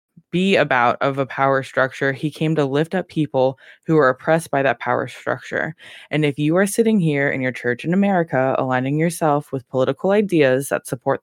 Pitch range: 140-175 Hz